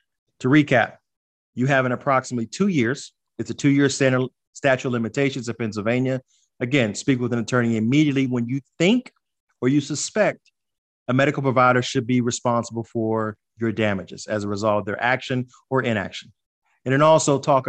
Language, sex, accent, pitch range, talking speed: English, male, American, 115-145 Hz, 165 wpm